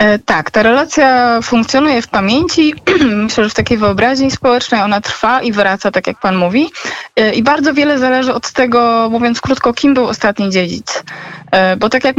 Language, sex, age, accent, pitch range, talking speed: Polish, female, 20-39, native, 195-260 Hz, 170 wpm